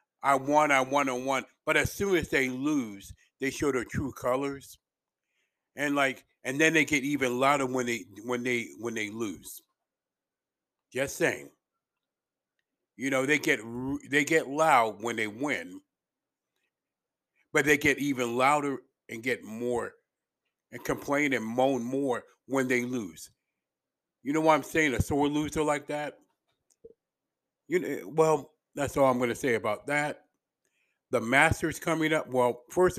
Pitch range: 125-145 Hz